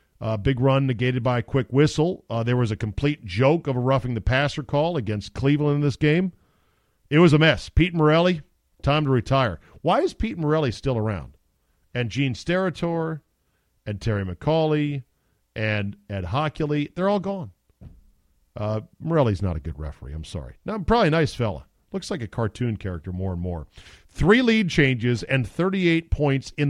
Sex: male